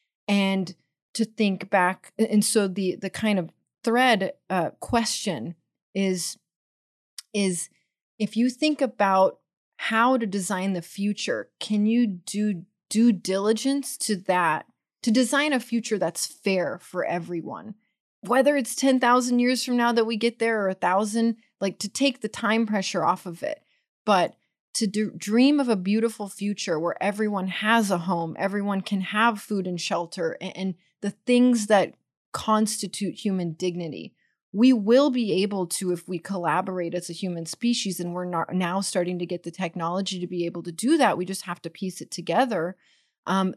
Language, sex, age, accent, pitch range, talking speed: English, female, 30-49, American, 180-225 Hz, 165 wpm